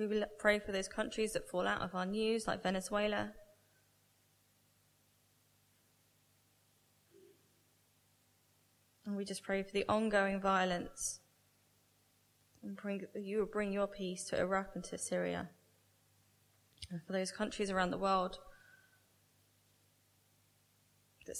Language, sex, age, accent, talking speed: English, female, 10-29, British, 115 wpm